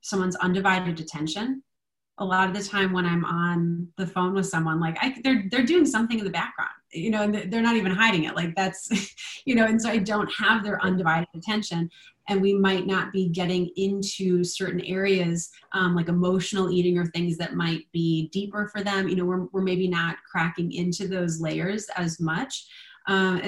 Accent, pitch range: American, 180-220 Hz